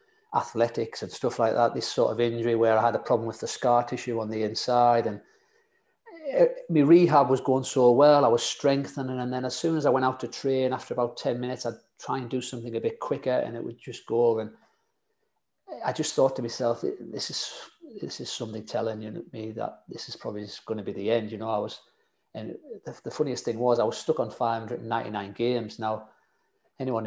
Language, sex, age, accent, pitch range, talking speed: English, male, 40-59, British, 115-130 Hz, 215 wpm